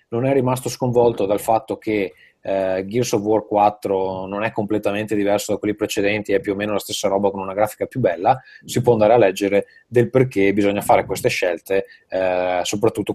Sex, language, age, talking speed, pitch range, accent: male, Italian, 20-39, 200 wpm, 100-110 Hz, native